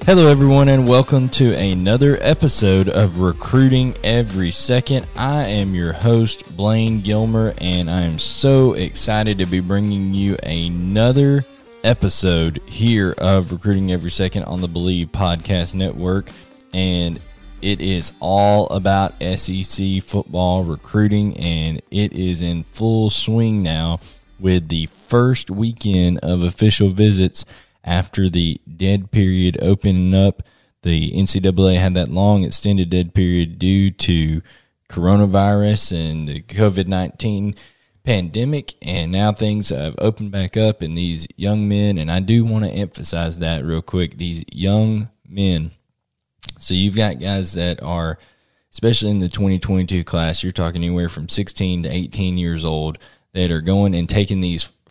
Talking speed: 140 wpm